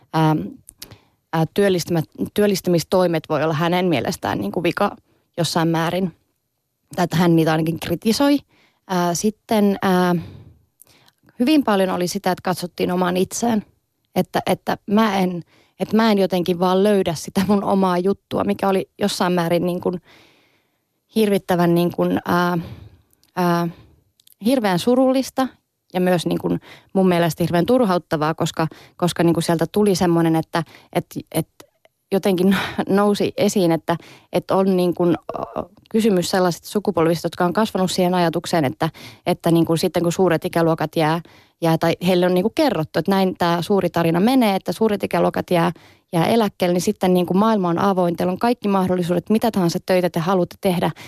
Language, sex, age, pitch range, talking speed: Finnish, female, 20-39, 165-195 Hz, 155 wpm